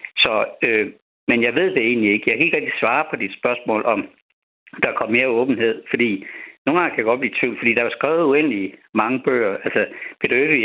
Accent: native